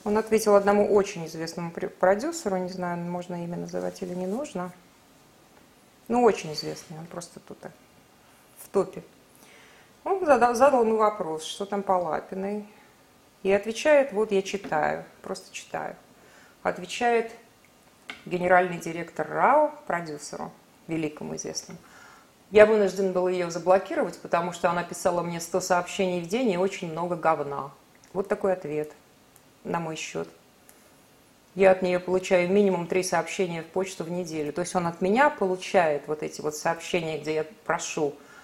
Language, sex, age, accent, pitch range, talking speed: Russian, female, 30-49, native, 165-200 Hz, 145 wpm